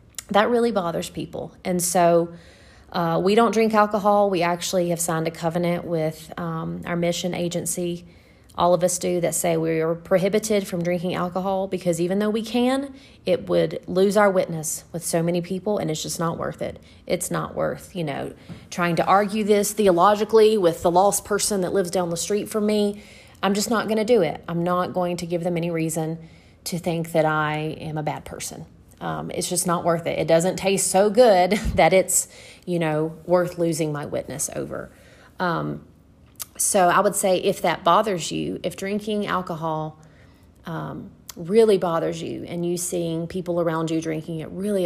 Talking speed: 190 wpm